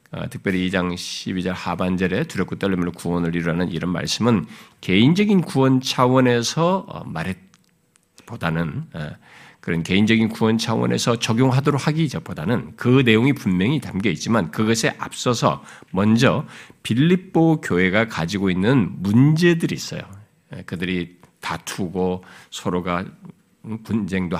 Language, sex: Korean, male